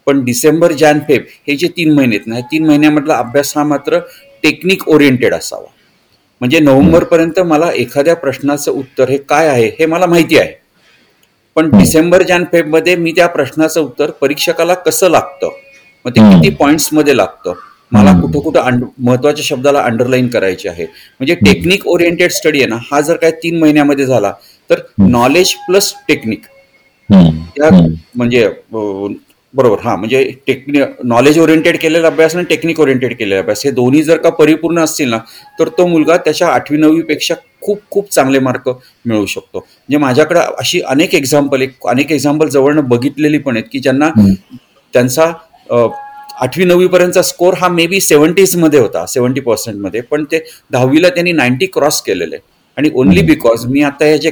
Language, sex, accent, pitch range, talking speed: Marathi, male, native, 130-170 Hz, 110 wpm